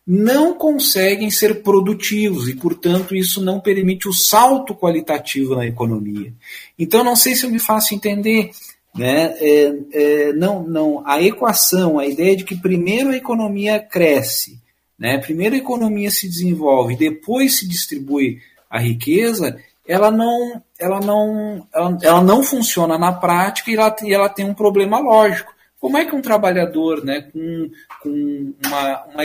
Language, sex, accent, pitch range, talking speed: Portuguese, male, Brazilian, 150-205 Hz, 155 wpm